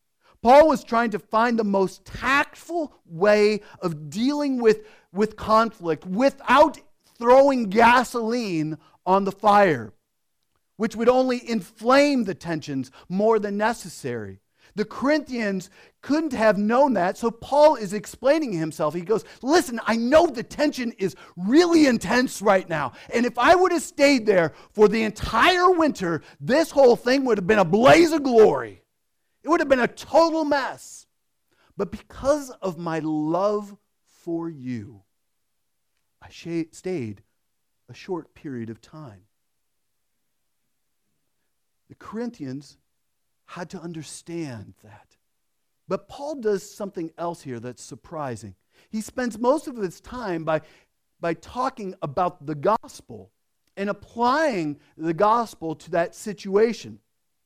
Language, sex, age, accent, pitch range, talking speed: English, male, 40-59, American, 165-250 Hz, 135 wpm